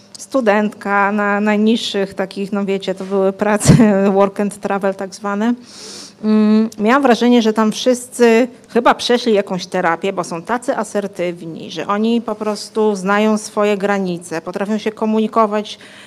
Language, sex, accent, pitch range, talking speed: Polish, female, native, 195-225 Hz, 140 wpm